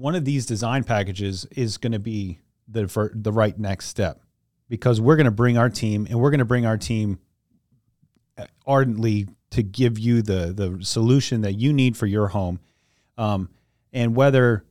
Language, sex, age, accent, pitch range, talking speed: English, male, 30-49, American, 100-120 Hz, 185 wpm